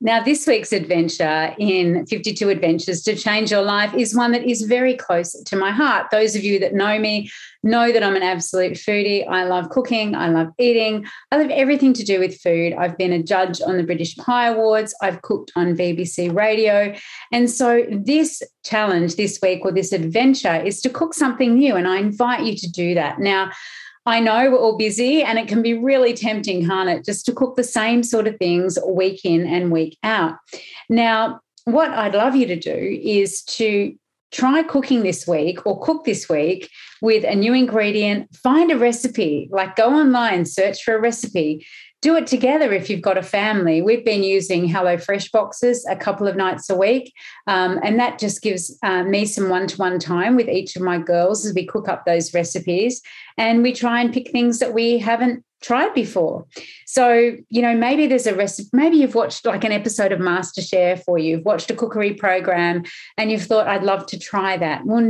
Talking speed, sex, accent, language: 205 wpm, female, Australian, English